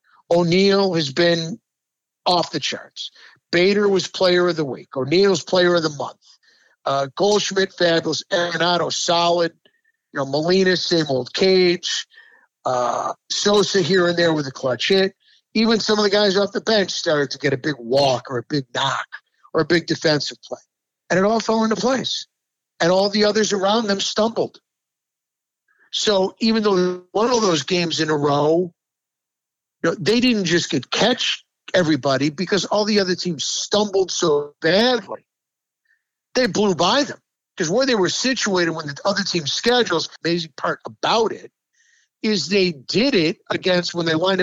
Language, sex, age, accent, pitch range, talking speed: English, male, 50-69, American, 165-210 Hz, 170 wpm